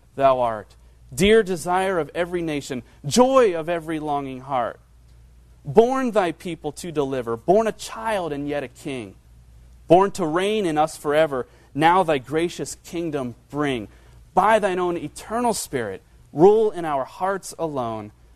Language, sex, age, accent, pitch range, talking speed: English, male, 30-49, American, 115-170 Hz, 145 wpm